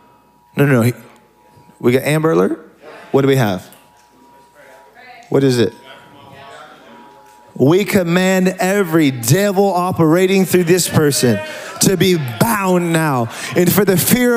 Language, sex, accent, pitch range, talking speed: English, male, American, 135-205 Hz, 125 wpm